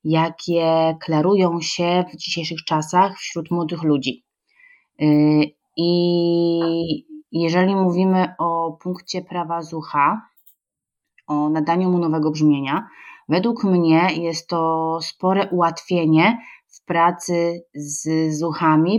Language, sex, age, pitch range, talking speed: Polish, female, 20-39, 155-180 Hz, 100 wpm